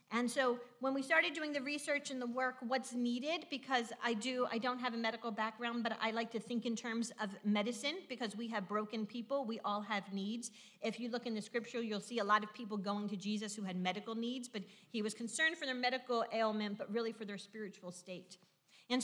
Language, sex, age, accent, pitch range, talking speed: English, female, 40-59, American, 205-245 Hz, 235 wpm